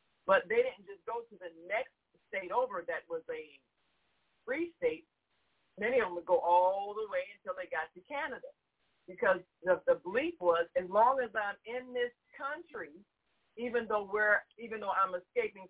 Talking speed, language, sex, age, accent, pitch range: 170 wpm, English, female, 40-59, American, 180-250 Hz